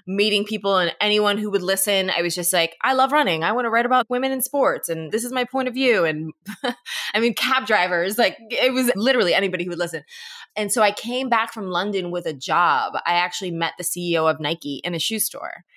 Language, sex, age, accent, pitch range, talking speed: English, female, 20-39, American, 170-215 Hz, 240 wpm